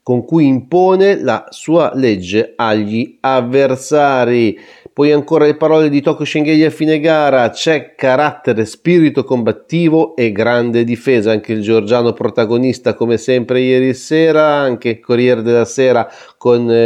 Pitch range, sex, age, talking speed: 120-155 Hz, male, 30-49, 140 wpm